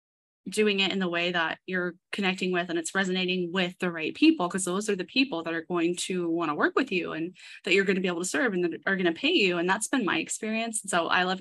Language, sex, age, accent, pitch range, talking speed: English, female, 10-29, American, 180-220 Hz, 285 wpm